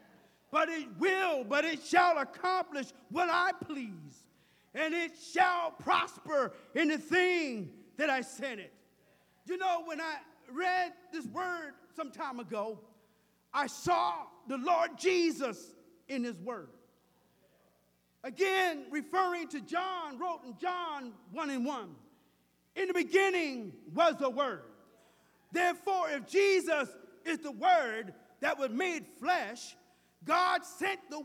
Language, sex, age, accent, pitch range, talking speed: English, male, 50-69, American, 260-350 Hz, 130 wpm